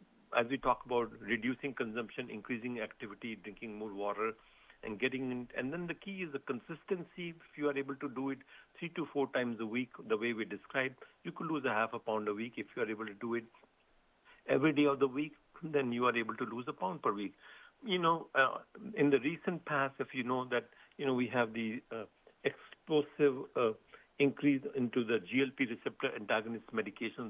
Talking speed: 210 wpm